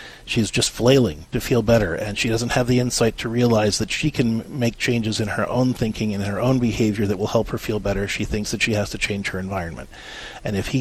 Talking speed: 250 wpm